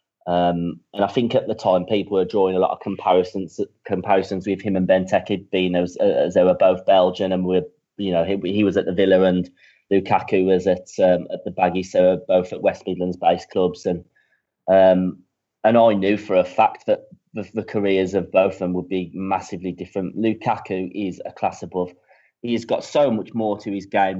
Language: English